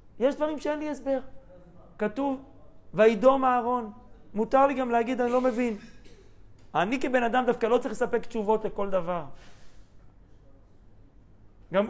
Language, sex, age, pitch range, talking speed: Hebrew, male, 40-59, 155-225 Hz, 130 wpm